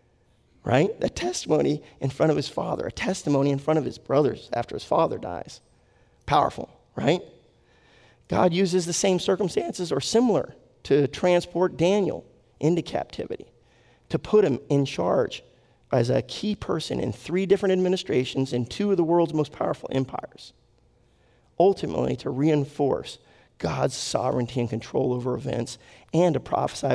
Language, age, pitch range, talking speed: English, 40-59, 120-170 Hz, 145 wpm